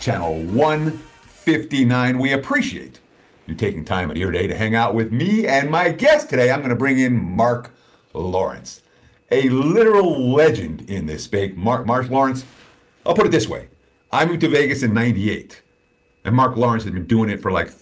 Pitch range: 95-135 Hz